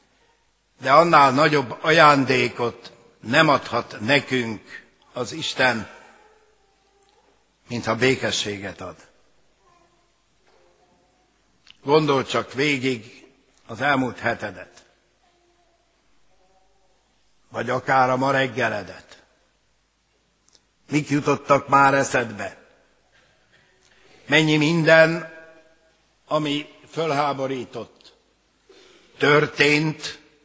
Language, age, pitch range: Hungarian, 60-79, 125-155 Hz